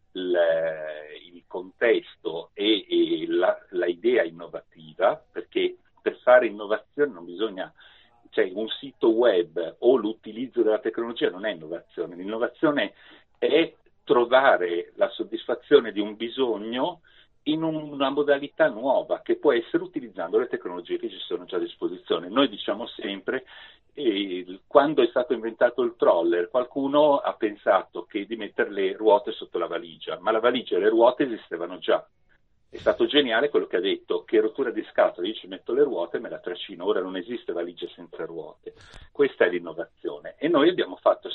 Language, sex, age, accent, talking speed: Italian, male, 50-69, native, 160 wpm